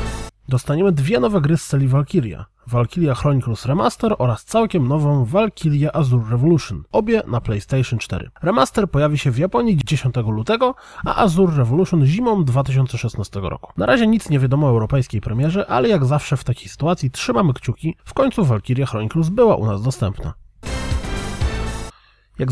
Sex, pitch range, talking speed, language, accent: male, 120-165 Hz, 155 wpm, Polish, native